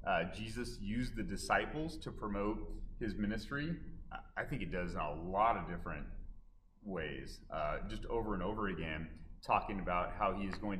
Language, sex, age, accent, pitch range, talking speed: English, male, 30-49, American, 90-110 Hz, 170 wpm